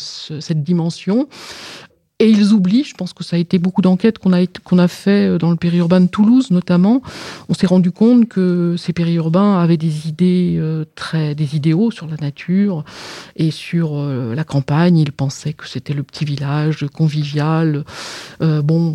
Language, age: French, 50-69